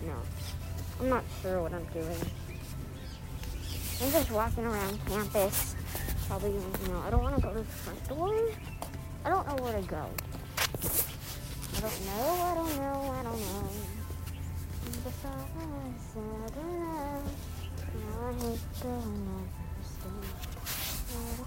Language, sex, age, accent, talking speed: English, male, 40-59, American, 115 wpm